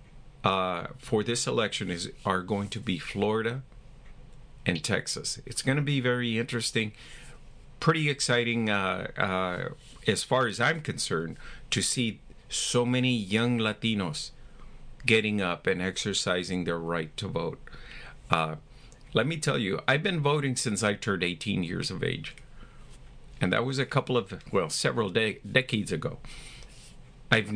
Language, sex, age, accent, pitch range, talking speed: English, male, 50-69, American, 105-135 Hz, 150 wpm